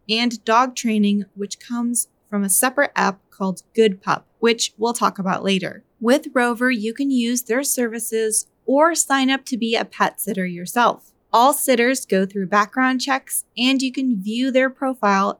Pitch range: 205-255 Hz